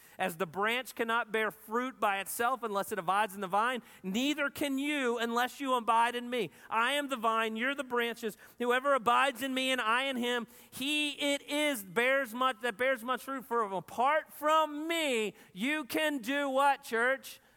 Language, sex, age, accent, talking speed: English, male, 40-59, American, 180 wpm